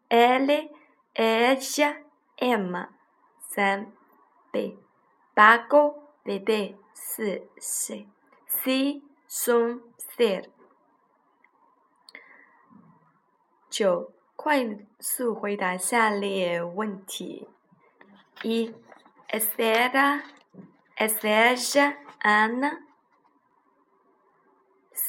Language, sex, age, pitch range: Chinese, female, 20-39, 210-270 Hz